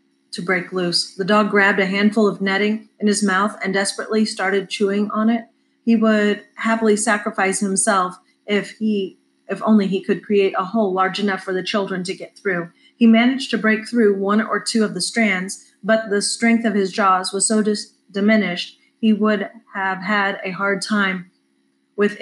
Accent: American